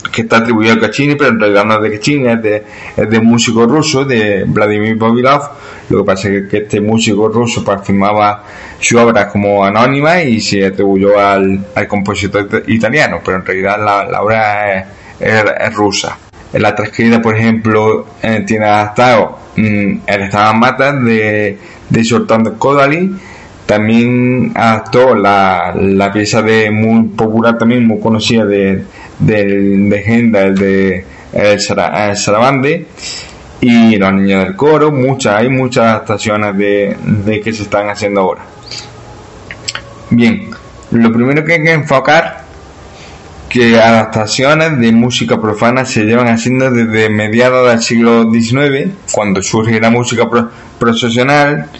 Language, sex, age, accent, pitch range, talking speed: Spanish, male, 20-39, Spanish, 105-120 Hz, 150 wpm